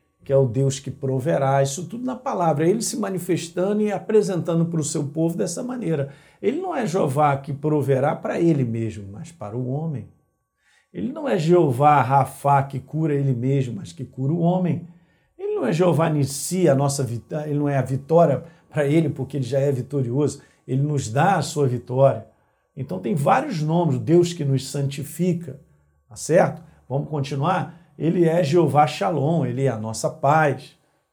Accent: Brazilian